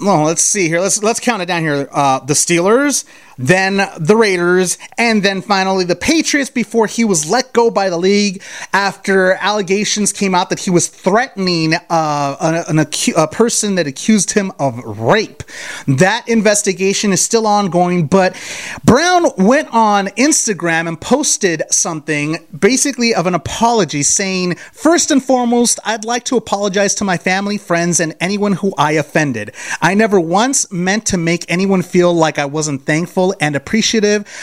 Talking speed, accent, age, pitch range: 160 wpm, American, 30-49, 160-210 Hz